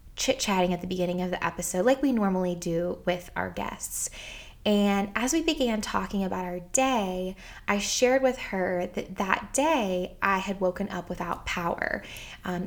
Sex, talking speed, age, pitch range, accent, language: female, 170 wpm, 20-39, 175-200 Hz, American, English